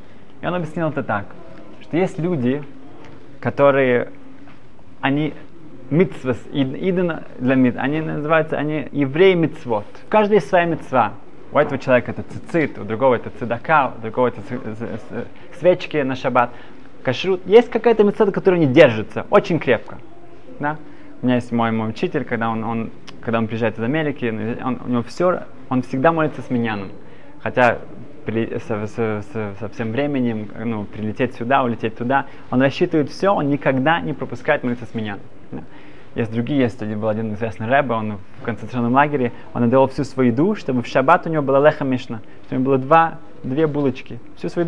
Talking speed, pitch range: 170 wpm, 120-160 Hz